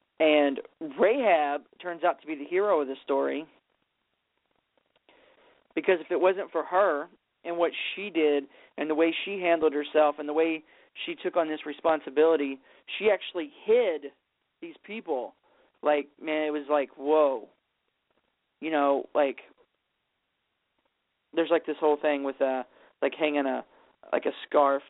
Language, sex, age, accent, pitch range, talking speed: English, male, 40-59, American, 145-175 Hz, 150 wpm